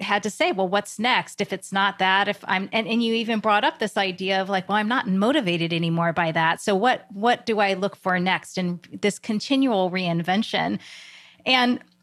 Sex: female